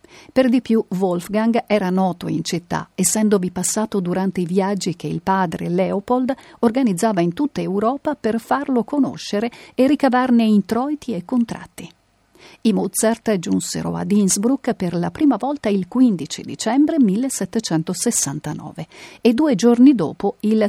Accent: native